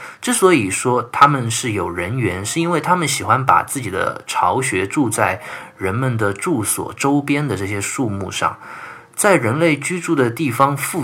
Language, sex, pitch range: Chinese, male, 110-165 Hz